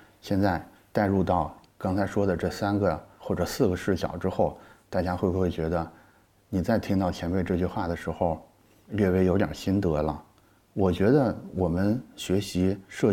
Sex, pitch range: male, 90-110 Hz